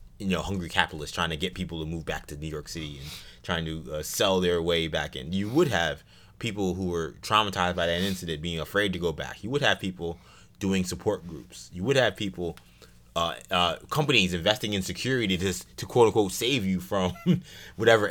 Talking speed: 215 wpm